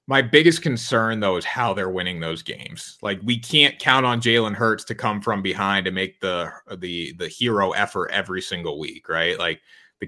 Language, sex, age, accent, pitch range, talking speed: English, male, 30-49, American, 95-115 Hz, 205 wpm